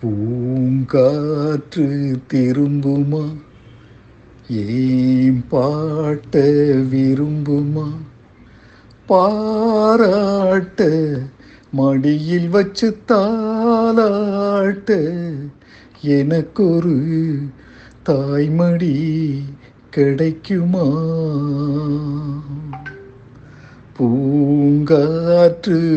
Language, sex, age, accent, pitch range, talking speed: Tamil, male, 60-79, native, 140-175 Hz, 30 wpm